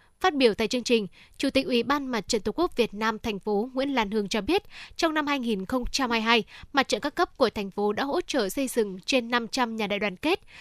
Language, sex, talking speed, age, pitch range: Vietnamese, female, 245 wpm, 10-29, 215-275 Hz